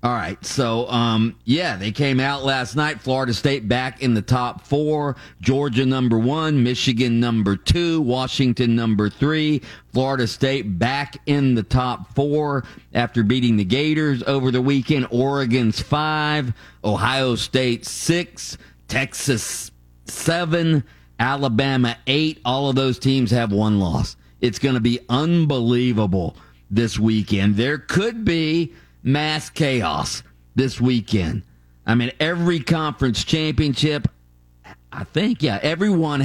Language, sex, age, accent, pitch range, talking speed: English, male, 40-59, American, 115-150 Hz, 130 wpm